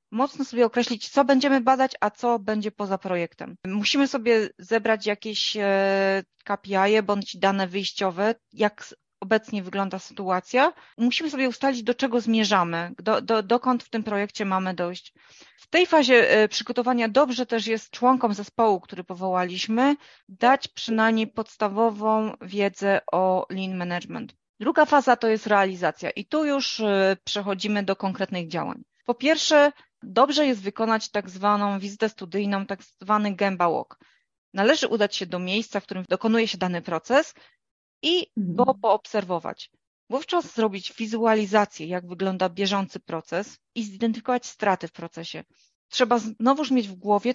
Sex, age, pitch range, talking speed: female, 30-49, 195-240 Hz, 140 wpm